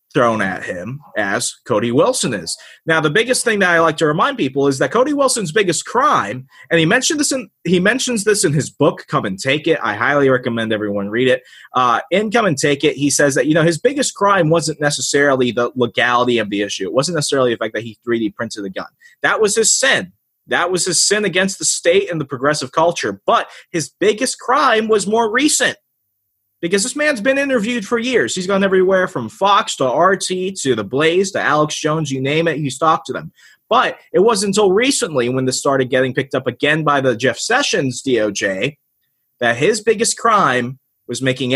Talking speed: 215 wpm